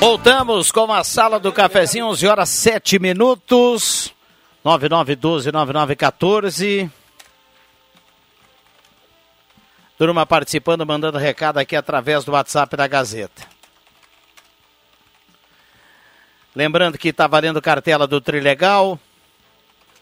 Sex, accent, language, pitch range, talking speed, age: male, Brazilian, Portuguese, 140-180 Hz, 85 wpm, 60-79